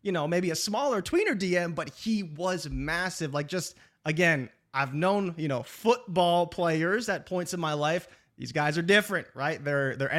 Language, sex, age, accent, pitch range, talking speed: English, male, 20-39, American, 135-165 Hz, 190 wpm